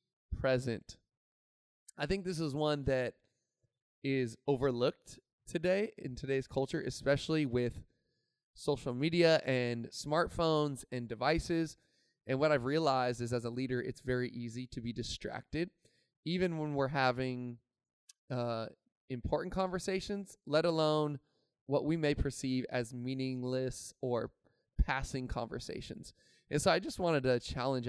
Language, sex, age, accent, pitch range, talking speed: English, male, 20-39, American, 125-155 Hz, 130 wpm